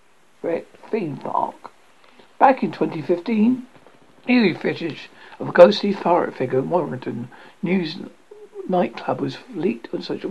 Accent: British